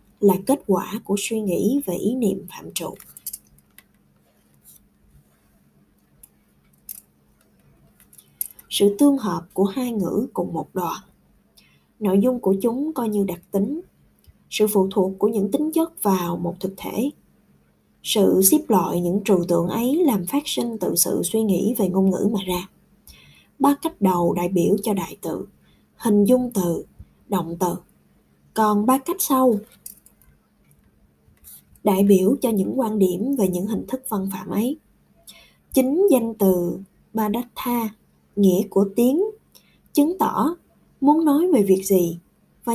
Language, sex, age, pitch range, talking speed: Vietnamese, female, 20-39, 185-250 Hz, 145 wpm